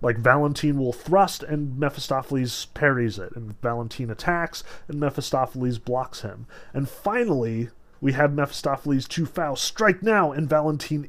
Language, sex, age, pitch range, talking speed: English, male, 30-49, 120-150 Hz, 140 wpm